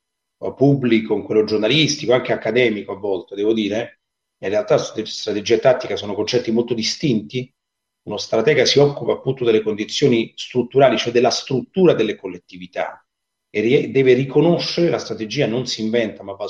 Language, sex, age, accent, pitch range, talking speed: Italian, male, 30-49, native, 110-135 Hz, 155 wpm